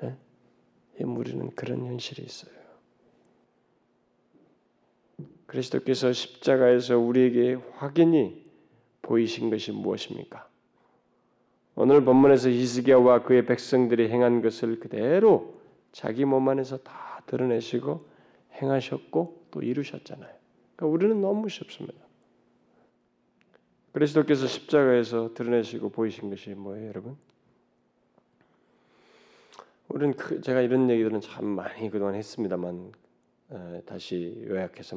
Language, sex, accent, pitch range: Korean, male, native, 110-150 Hz